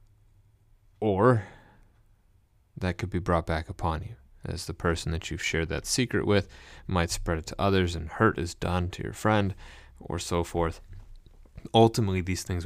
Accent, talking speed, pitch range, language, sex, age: American, 165 wpm, 85-100 Hz, English, male, 30-49